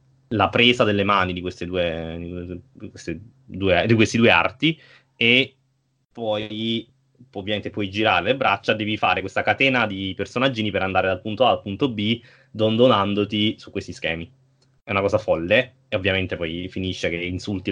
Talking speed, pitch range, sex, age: 165 wpm, 90-110 Hz, male, 20-39